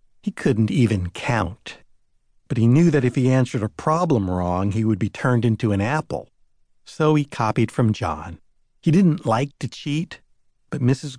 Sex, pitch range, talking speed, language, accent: male, 105-150 Hz, 175 wpm, English, American